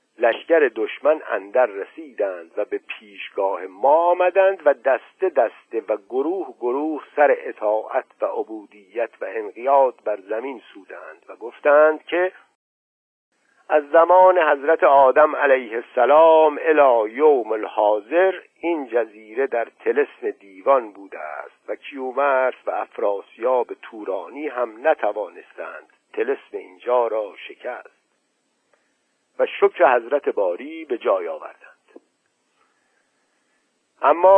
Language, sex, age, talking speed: Persian, male, 50-69, 110 wpm